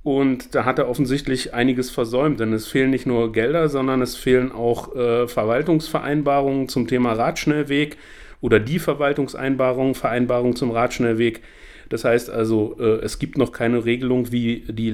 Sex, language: male, German